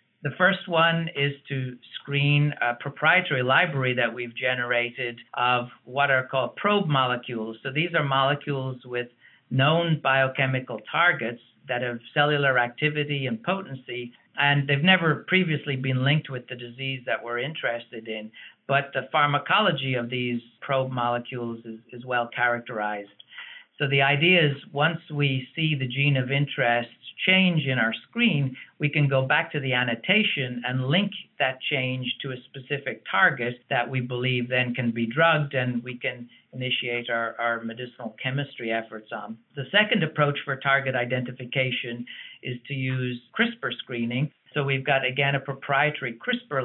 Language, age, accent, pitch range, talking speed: English, 50-69, American, 120-145 Hz, 155 wpm